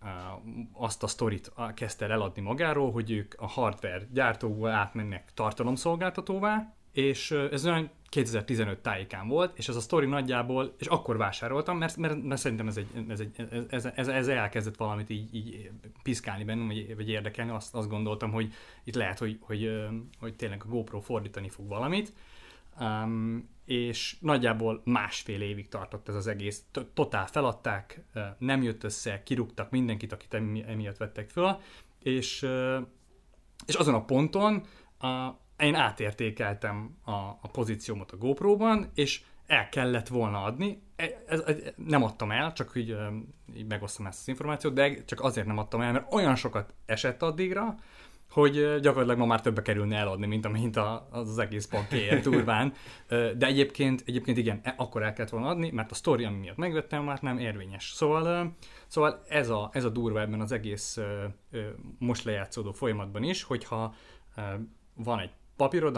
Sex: male